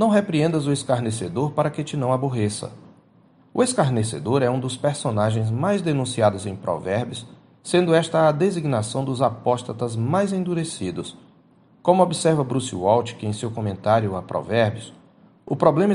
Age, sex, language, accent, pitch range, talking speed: 40-59, male, Portuguese, Brazilian, 115-160 Hz, 145 wpm